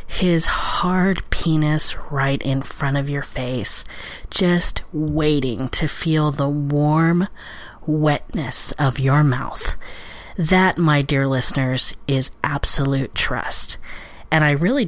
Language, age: English, 40-59